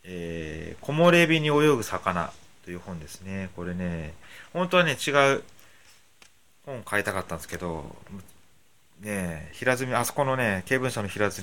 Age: 30-49